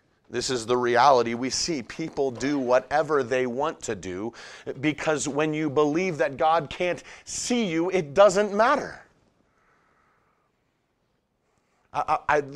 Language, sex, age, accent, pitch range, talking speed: English, male, 30-49, American, 155-200 Hz, 125 wpm